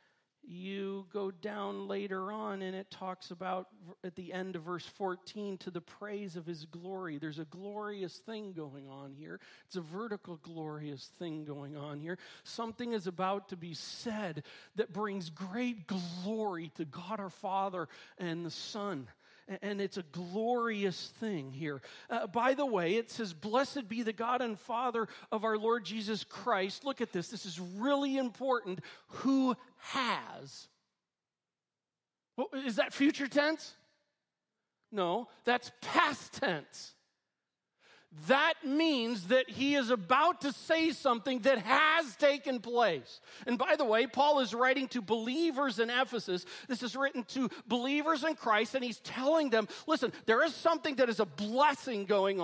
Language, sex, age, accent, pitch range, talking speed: English, male, 40-59, American, 190-265 Hz, 160 wpm